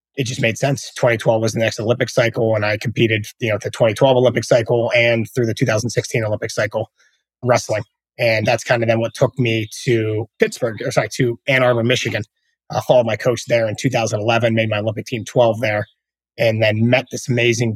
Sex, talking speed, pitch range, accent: male, 225 wpm, 110-125 Hz, American